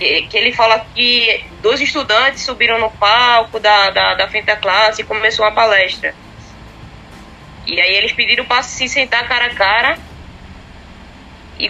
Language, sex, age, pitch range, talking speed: Portuguese, female, 20-39, 215-265 Hz, 155 wpm